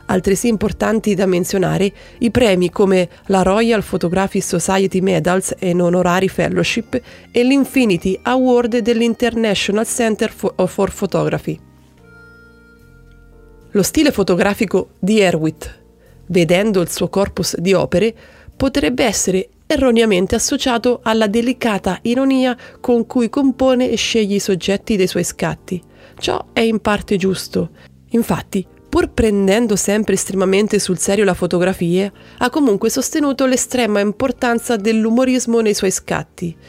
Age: 30-49